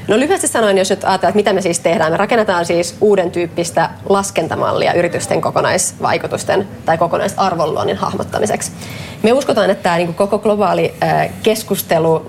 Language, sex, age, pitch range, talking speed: Finnish, female, 20-39, 175-200 Hz, 135 wpm